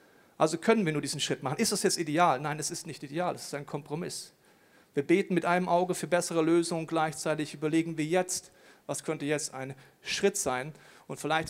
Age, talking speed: 40-59, 210 wpm